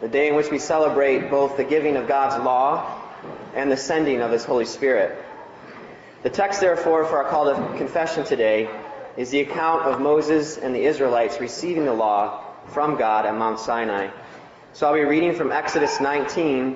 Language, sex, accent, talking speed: English, male, American, 185 wpm